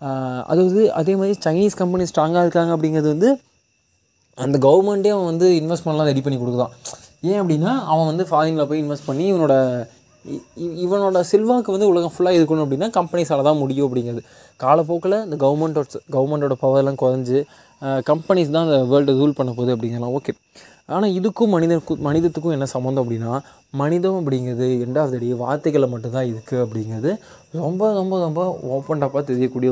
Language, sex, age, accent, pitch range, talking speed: Tamil, male, 20-39, native, 130-170 Hz, 145 wpm